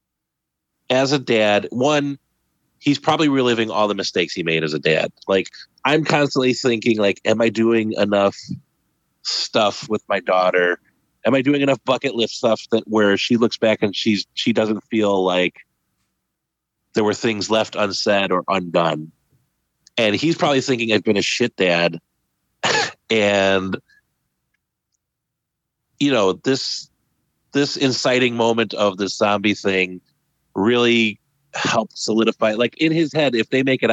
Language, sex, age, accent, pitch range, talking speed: English, male, 30-49, American, 95-125 Hz, 150 wpm